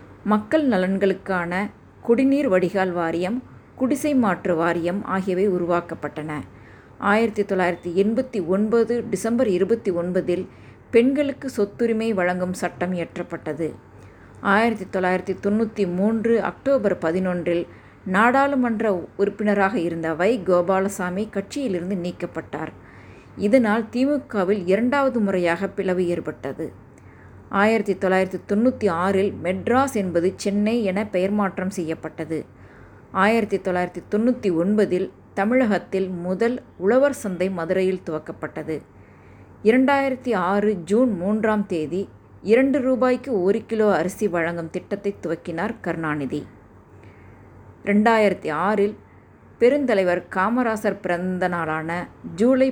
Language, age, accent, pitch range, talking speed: Tamil, 20-39, native, 170-220 Hz, 85 wpm